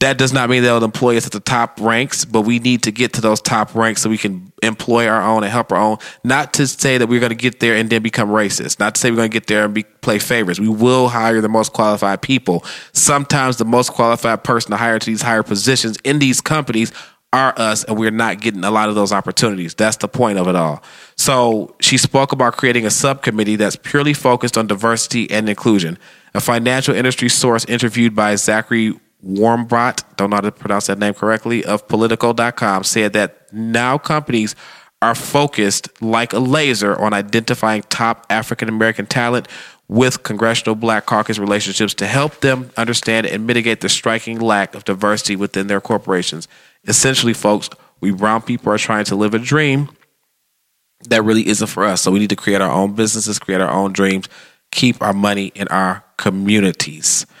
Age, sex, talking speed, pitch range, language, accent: 20-39, male, 200 wpm, 105-120 Hz, English, American